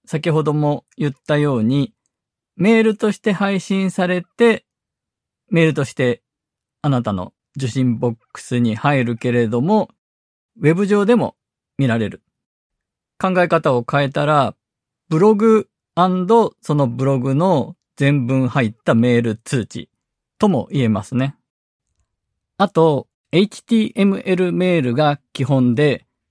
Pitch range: 120-180 Hz